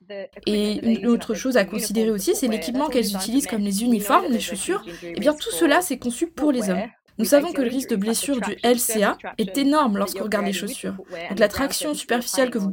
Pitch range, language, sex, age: 200-255 Hz, French, female, 20-39